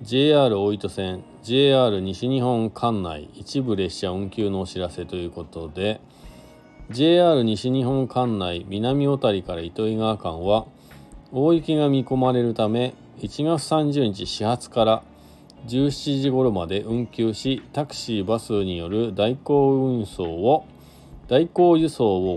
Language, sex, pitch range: Japanese, male, 90-140 Hz